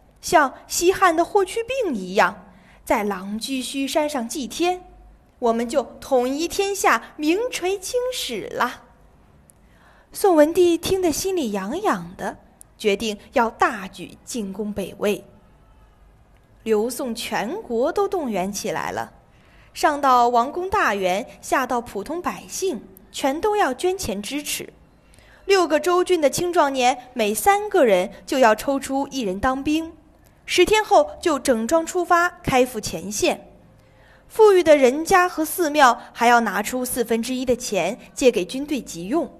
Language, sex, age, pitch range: Chinese, female, 20-39, 225-345 Hz